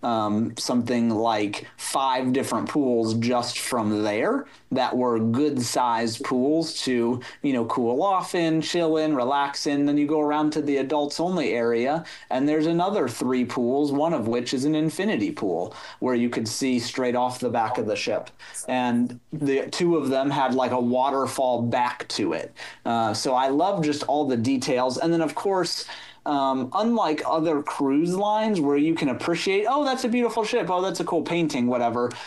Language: English